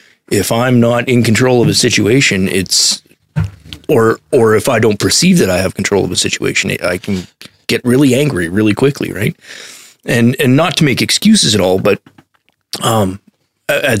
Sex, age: male, 40-59